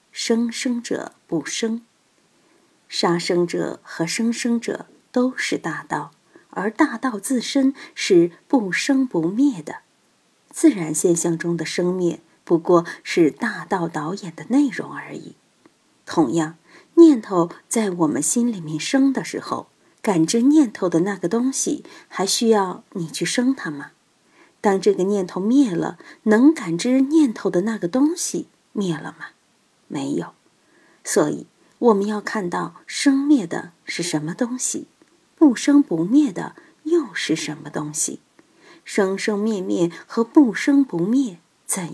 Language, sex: Chinese, female